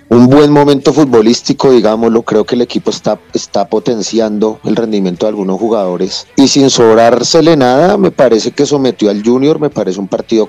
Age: 30-49